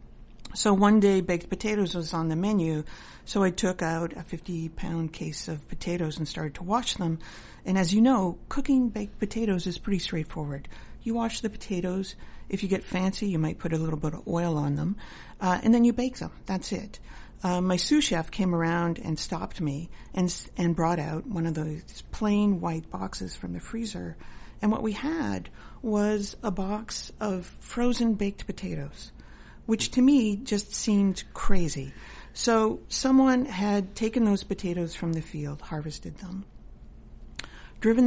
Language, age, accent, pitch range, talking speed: English, 50-69, American, 165-215 Hz, 175 wpm